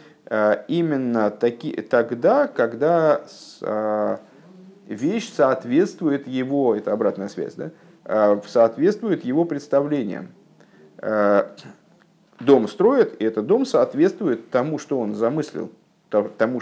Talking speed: 70 wpm